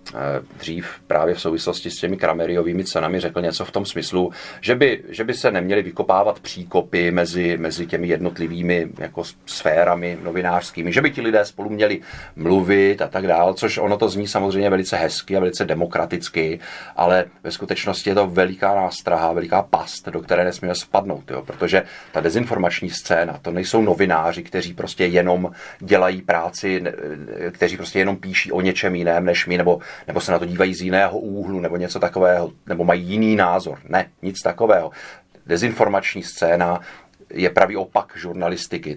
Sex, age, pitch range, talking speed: male, 30-49, 85-95 Hz, 165 wpm